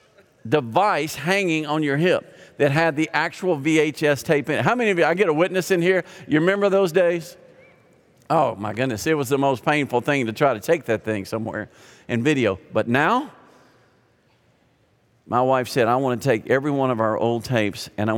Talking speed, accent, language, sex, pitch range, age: 205 wpm, American, English, male, 120-165 Hz, 50-69